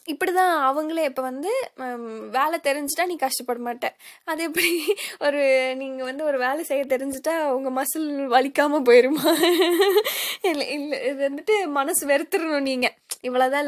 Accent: native